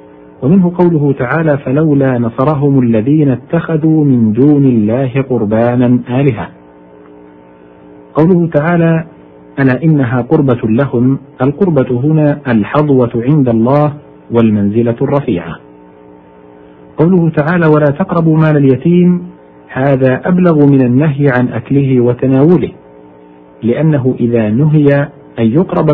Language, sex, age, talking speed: Arabic, male, 50-69, 100 wpm